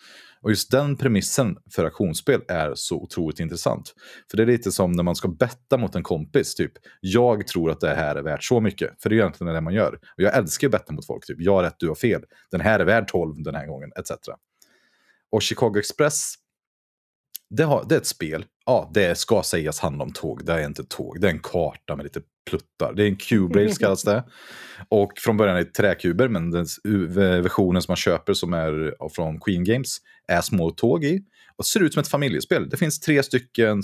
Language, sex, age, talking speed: Swedish, male, 30-49, 220 wpm